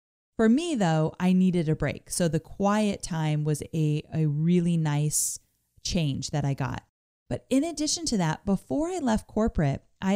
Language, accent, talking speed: English, American, 175 wpm